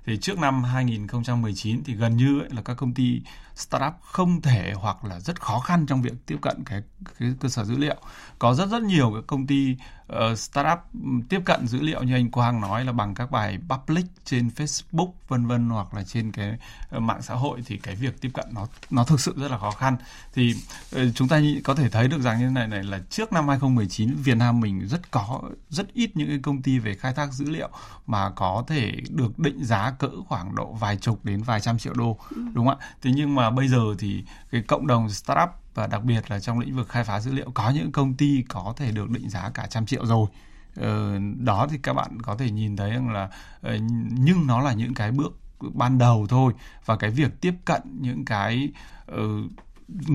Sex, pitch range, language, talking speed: male, 110-140 Hz, Vietnamese, 225 wpm